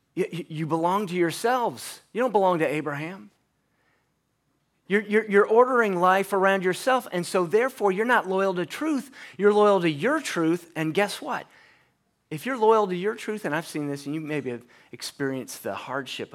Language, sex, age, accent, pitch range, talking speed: English, male, 30-49, American, 130-195 Hz, 175 wpm